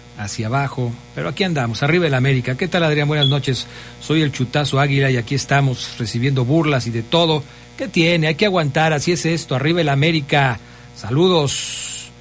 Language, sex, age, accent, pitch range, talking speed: Spanish, male, 50-69, Mexican, 115-150 Hz, 180 wpm